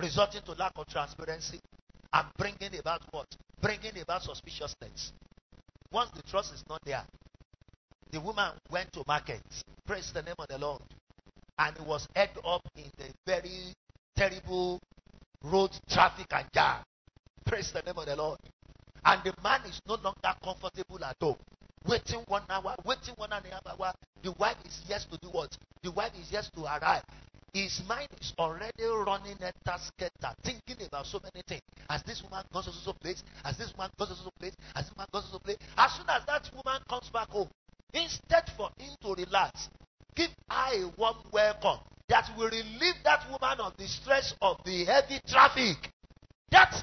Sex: male